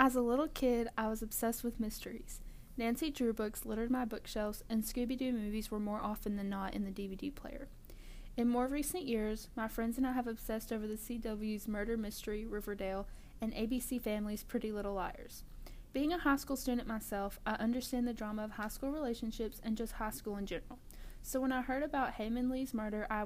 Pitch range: 215-250 Hz